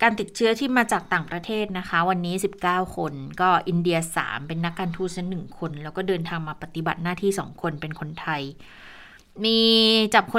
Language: Thai